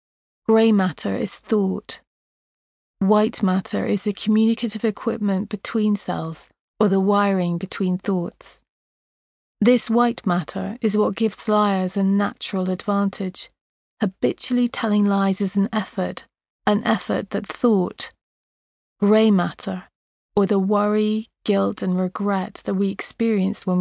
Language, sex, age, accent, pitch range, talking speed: English, female, 30-49, British, 190-220 Hz, 125 wpm